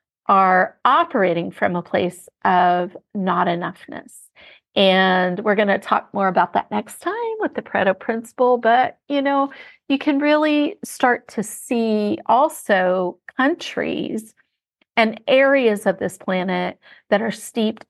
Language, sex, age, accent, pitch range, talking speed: English, female, 40-59, American, 190-240 Hz, 135 wpm